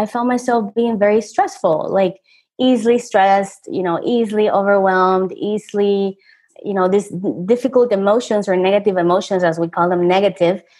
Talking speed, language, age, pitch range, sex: 150 wpm, English, 20-39, 175-220 Hz, female